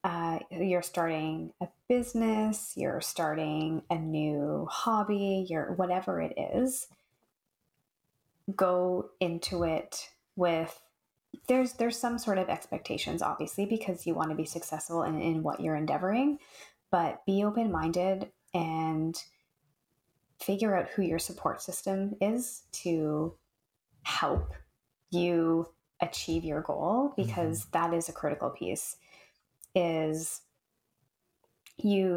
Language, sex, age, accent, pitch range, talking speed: English, female, 20-39, American, 160-185 Hz, 115 wpm